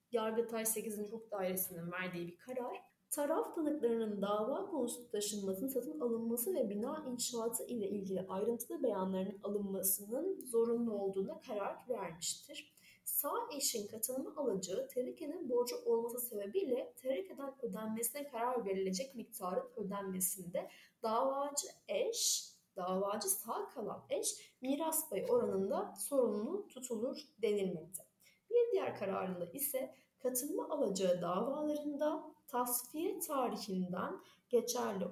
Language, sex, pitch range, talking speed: Turkish, female, 200-290 Hz, 105 wpm